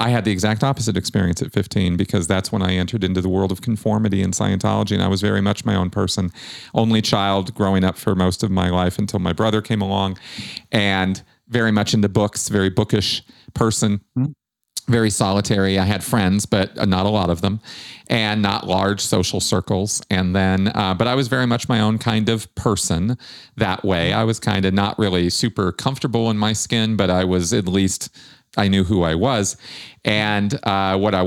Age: 40-59